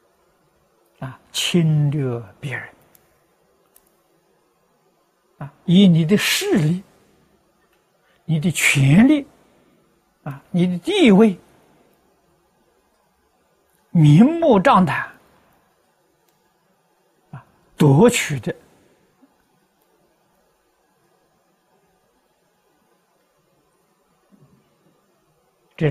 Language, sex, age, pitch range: Chinese, male, 60-79, 140-180 Hz